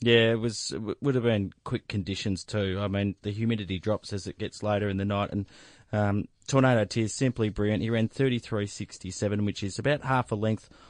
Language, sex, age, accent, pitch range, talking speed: English, male, 20-39, Australian, 100-115 Hz, 205 wpm